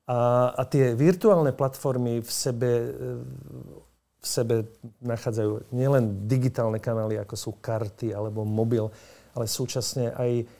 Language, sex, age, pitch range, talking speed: Slovak, male, 50-69, 115-140 Hz, 120 wpm